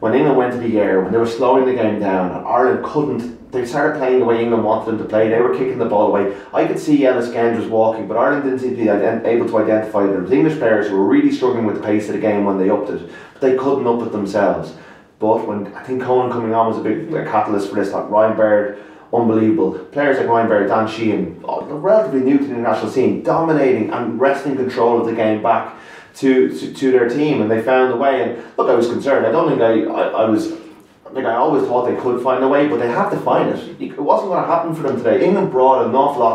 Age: 30-49